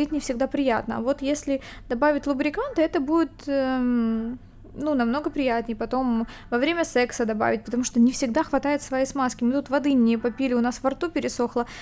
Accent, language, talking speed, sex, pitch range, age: native, Ukrainian, 185 wpm, female, 230-275 Hz, 20-39